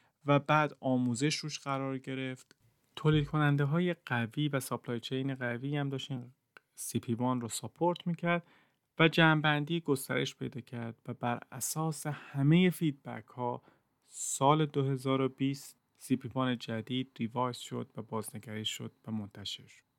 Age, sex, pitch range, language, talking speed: 30-49, male, 115-145 Hz, Persian, 135 wpm